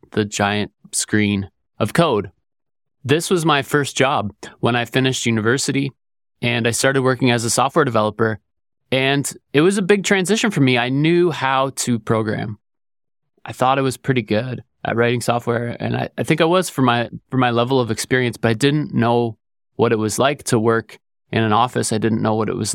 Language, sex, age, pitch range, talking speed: English, male, 20-39, 110-125 Hz, 200 wpm